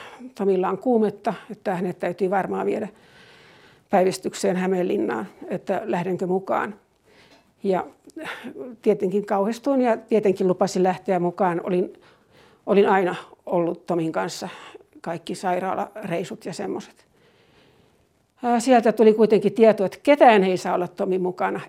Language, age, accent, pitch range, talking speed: Finnish, 60-79, native, 185-220 Hz, 115 wpm